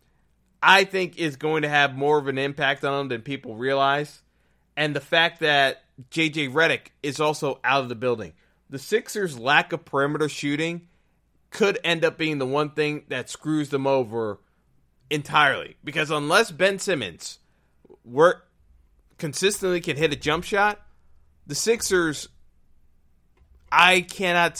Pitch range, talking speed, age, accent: 120-165 Hz, 145 wpm, 30-49, American